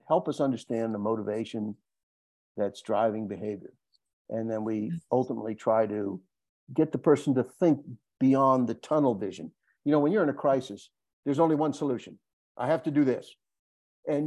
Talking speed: 170 wpm